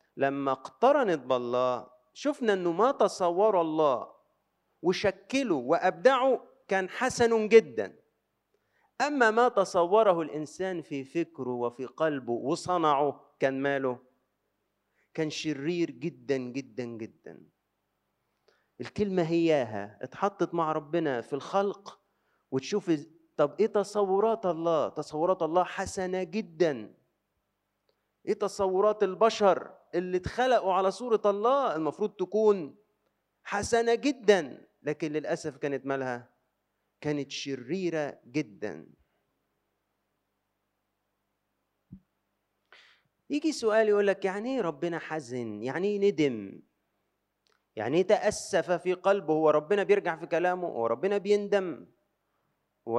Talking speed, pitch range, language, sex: 100 wpm, 145-200 Hz, Arabic, male